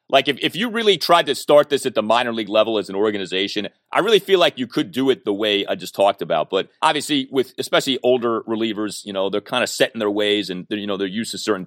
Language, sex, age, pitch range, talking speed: English, male, 30-49, 110-145 Hz, 275 wpm